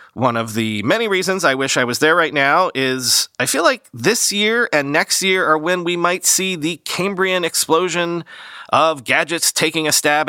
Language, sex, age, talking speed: English, male, 30-49, 200 wpm